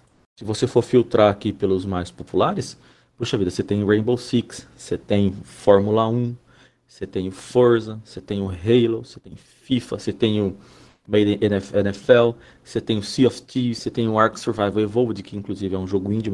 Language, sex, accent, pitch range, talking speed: Portuguese, male, Brazilian, 100-125 Hz, 190 wpm